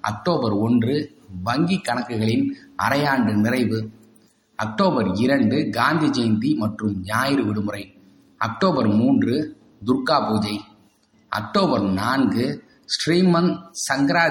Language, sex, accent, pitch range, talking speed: Tamil, male, native, 110-160 Hz, 90 wpm